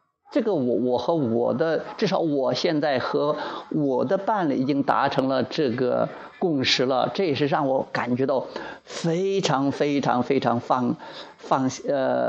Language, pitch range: Chinese, 130-180 Hz